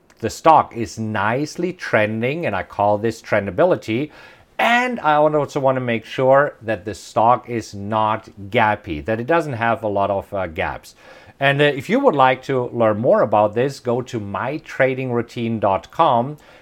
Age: 50-69